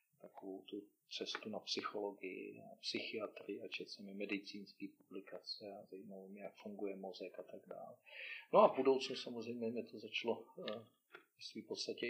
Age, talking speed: 40-59, 145 wpm